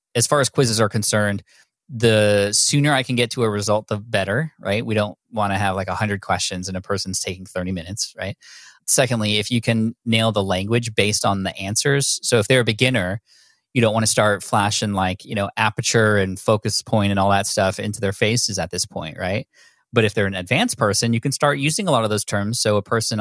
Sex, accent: male, American